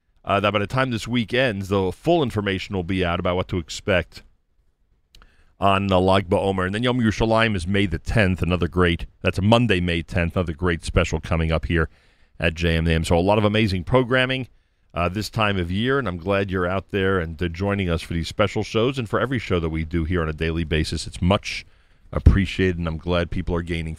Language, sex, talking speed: English, male, 230 wpm